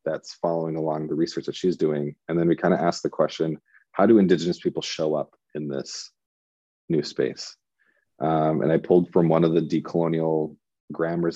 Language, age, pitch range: English, 30-49, 75-85 Hz